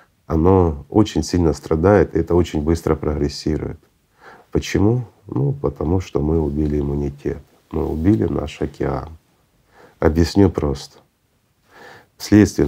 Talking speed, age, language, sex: 110 wpm, 40-59, Russian, male